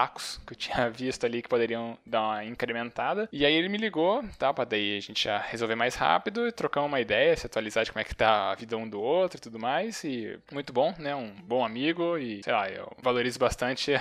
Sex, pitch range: male, 110-130 Hz